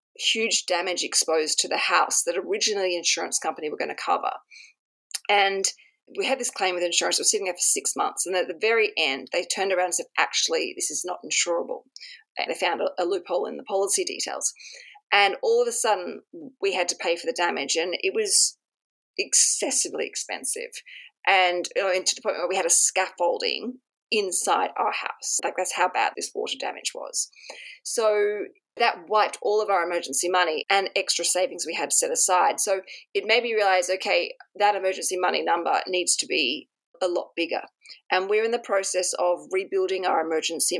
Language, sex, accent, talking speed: English, female, Australian, 195 wpm